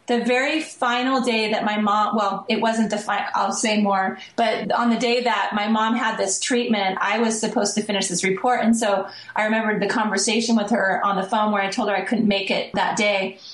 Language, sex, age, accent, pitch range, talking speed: English, female, 30-49, American, 205-235 Hz, 235 wpm